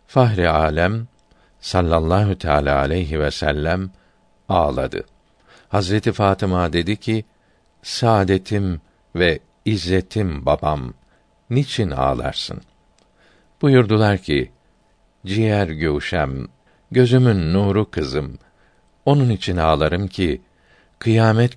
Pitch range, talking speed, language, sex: 85-105 Hz, 85 wpm, Turkish, male